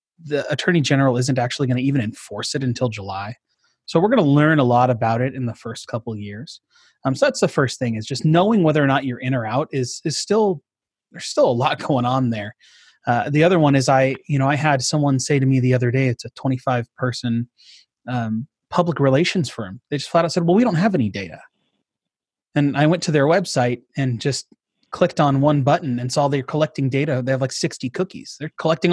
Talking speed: 235 wpm